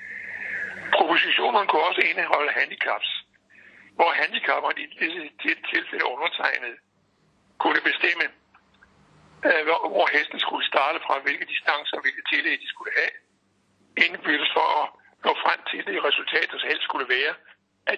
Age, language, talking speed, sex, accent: 60-79, Danish, 130 wpm, male, native